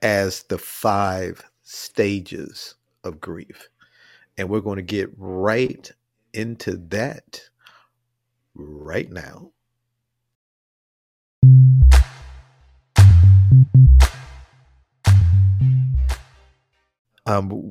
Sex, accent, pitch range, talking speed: male, American, 95-125 Hz, 60 wpm